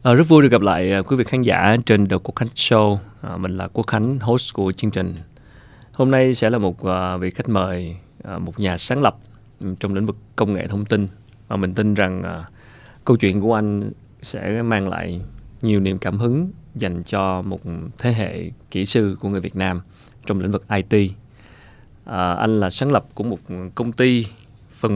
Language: Vietnamese